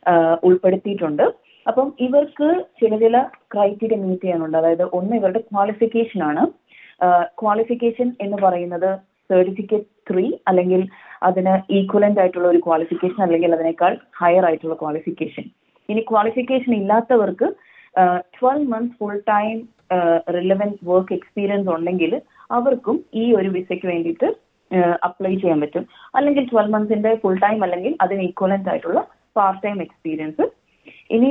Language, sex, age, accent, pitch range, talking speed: Malayalam, female, 30-49, native, 180-225 Hz, 110 wpm